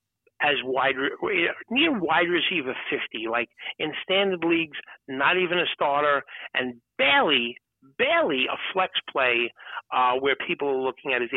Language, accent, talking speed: English, American, 145 wpm